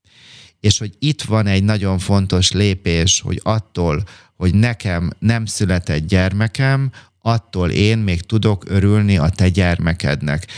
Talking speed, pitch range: 130 wpm, 95-110 Hz